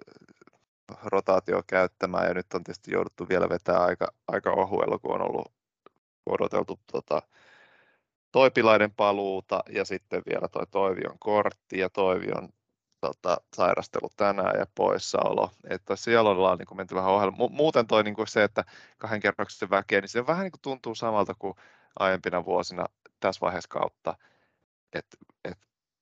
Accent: native